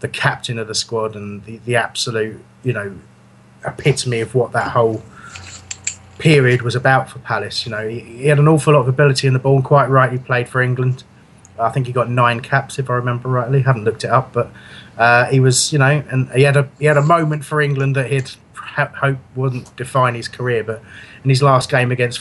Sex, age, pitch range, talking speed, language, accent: male, 30-49, 110-130 Hz, 230 wpm, English, British